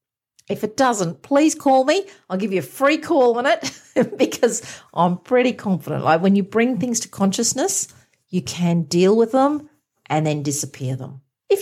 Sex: female